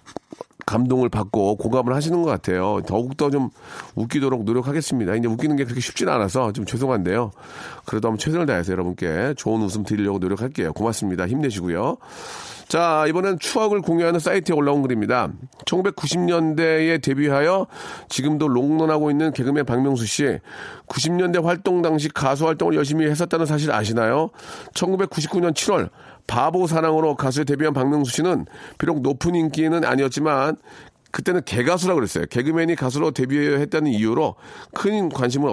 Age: 40-59